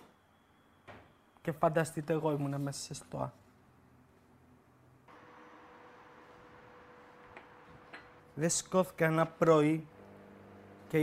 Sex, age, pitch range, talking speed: male, 30-49, 135-165 Hz, 65 wpm